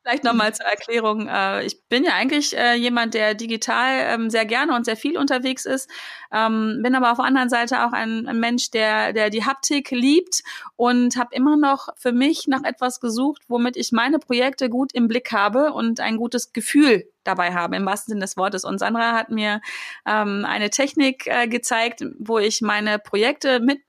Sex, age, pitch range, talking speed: female, 30-49, 210-255 Hz, 185 wpm